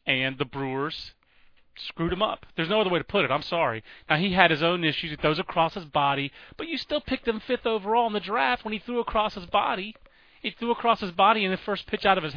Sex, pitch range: male, 145-200 Hz